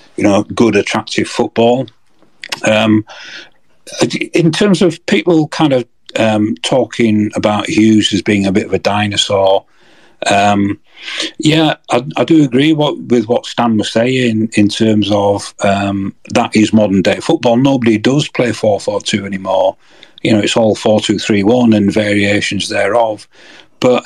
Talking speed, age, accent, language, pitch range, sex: 160 wpm, 40-59, British, English, 105-125 Hz, male